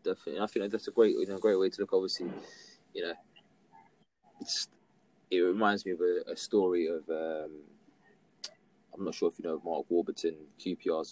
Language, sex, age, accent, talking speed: English, male, 20-39, British, 185 wpm